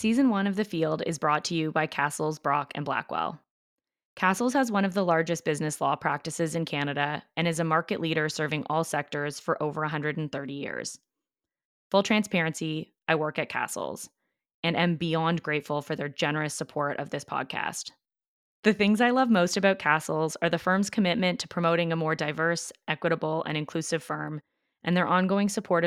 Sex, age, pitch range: female, 20-39, 155-185 Hz